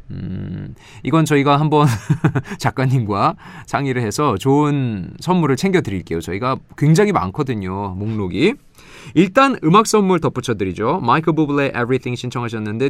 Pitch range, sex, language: 105-160 Hz, male, Korean